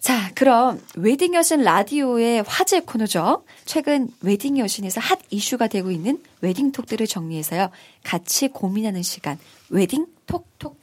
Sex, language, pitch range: female, Korean, 185-260 Hz